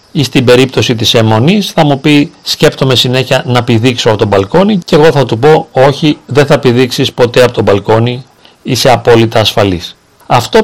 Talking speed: 180 wpm